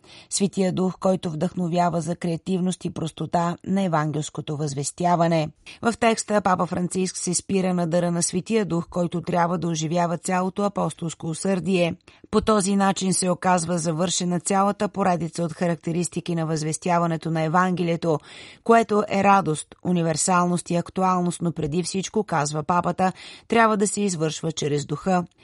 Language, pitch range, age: Bulgarian, 165-190 Hz, 30-49